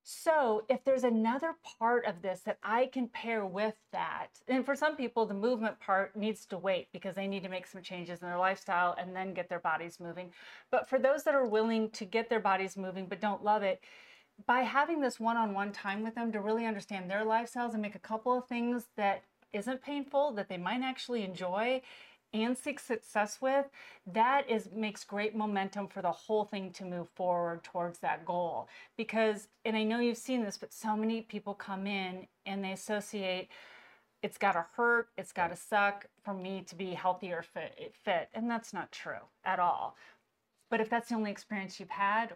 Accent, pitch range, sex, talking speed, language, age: American, 185-235 Hz, female, 200 wpm, English, 40-59